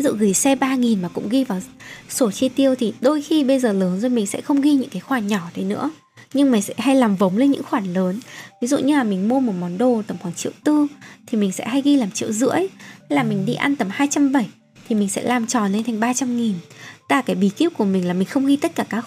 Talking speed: 275 wpm